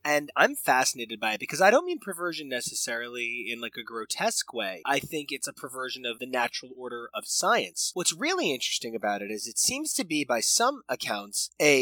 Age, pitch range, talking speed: 20-39, 135-200 Hz, 210 wpm